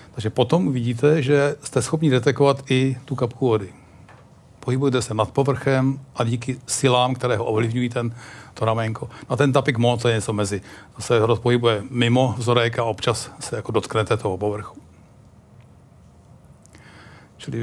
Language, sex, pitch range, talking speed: Czech, male, 115-135 Hz, 145 wpm